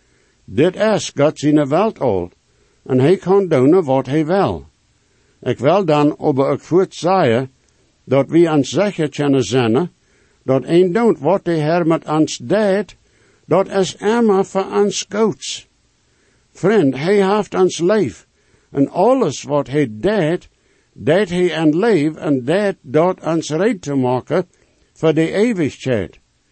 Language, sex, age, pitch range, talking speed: English, male, 60-79, 130-190 Hz, 145 wpm